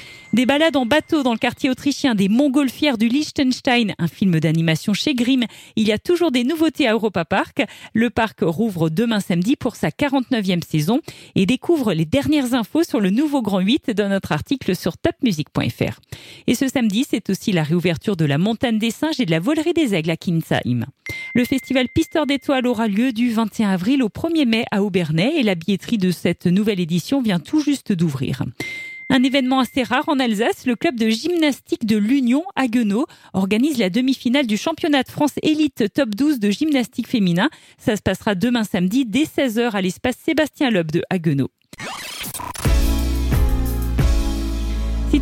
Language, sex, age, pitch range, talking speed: French, female, 40-59, 195-275 Hz, 180 wpm